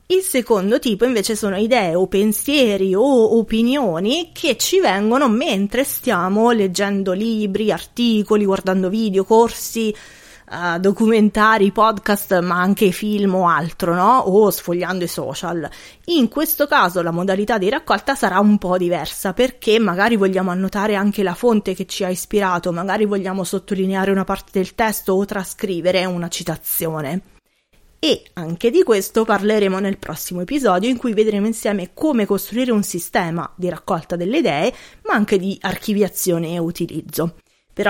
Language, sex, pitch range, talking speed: Italian, female, 180-220 Hz, 145 wpm